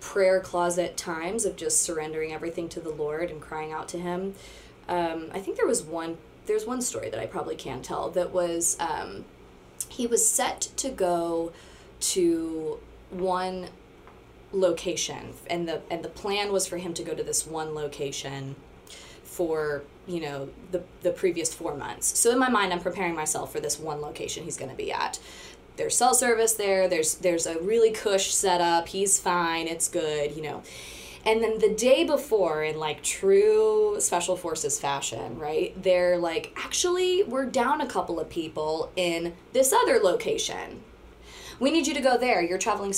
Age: 20-39